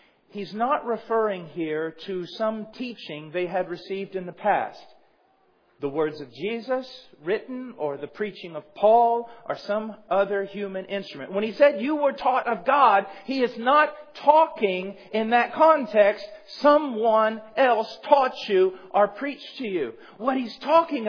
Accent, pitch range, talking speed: American, 195-280 Hz, 155 wpm